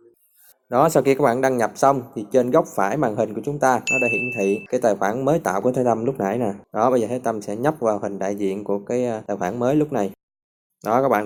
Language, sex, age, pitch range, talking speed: Vietnamese, male, 20-39, 110-140 Hz, 285 wpm